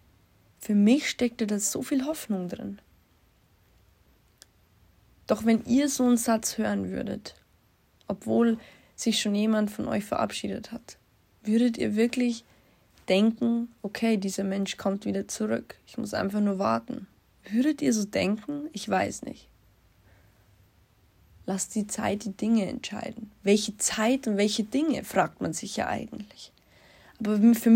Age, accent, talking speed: 20-39, German, 140 wpm